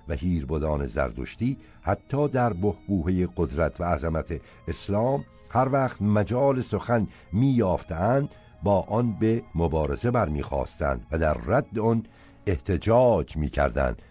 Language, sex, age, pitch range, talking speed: Persian, male, 60-79, 80-110 Hz, 110 wpm